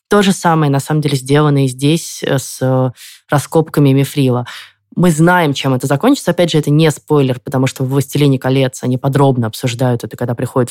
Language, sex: Russian, female